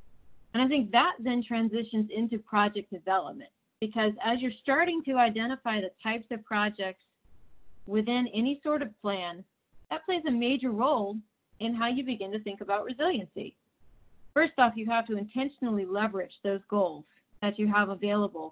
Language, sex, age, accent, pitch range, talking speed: English, female, 40-59, American, 190-230 Hz, 160 wpm